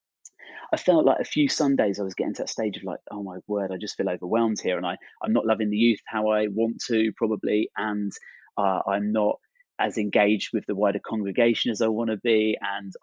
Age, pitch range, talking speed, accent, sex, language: 30-49, 105-120 Hz, 230 wpm, British, male, English